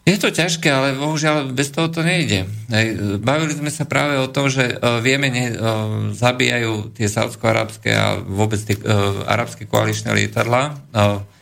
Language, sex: Slovak, male